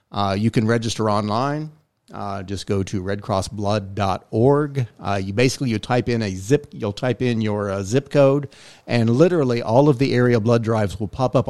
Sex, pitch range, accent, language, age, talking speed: male, 100-125 Hz, American, English, 50-69, 190 wpm